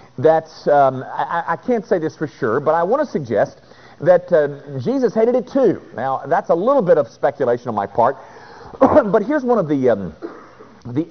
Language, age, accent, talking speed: English, 50-69, American, 200 wpm